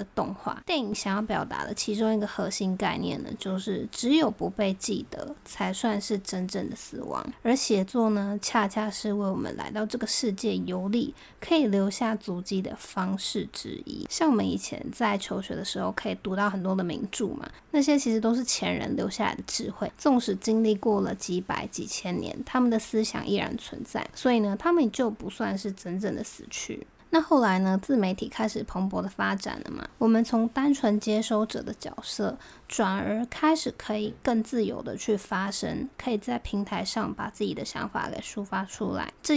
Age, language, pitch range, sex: 20-39, Chinese, 205-250 Hz, female